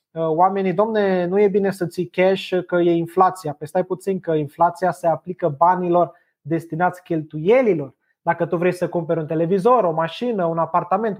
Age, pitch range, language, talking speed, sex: 20-39, 180-215 Hz, Romanian, 165 wpm, male